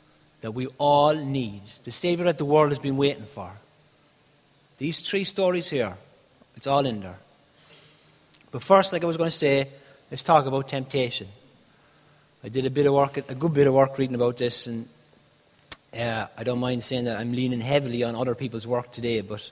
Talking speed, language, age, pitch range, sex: 195 wpm, English, 30-49, 120-155 Hz, male